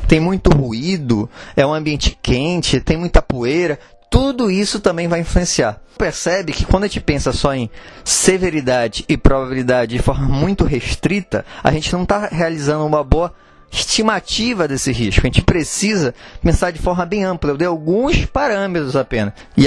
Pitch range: 130-185 Hz